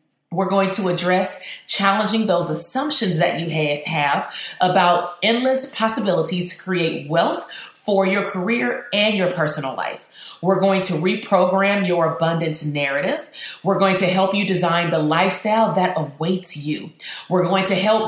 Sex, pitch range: female, 170-215 Hz